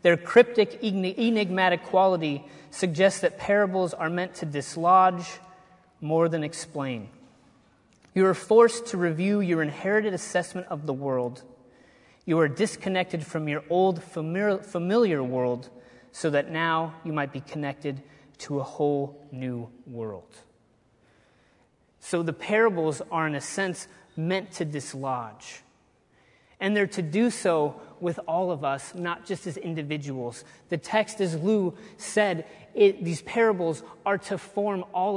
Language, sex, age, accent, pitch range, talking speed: English, male, 30-49, American, 155-210 Hz, 135 wpm